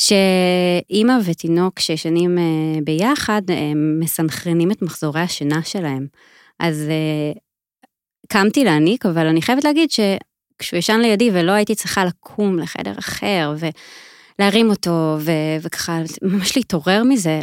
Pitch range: 160-205 Hz